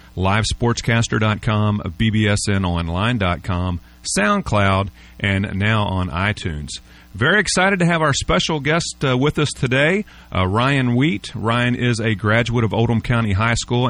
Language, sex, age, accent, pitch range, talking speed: English, male, 40-59, American, 100-125 Hz, 130 wpm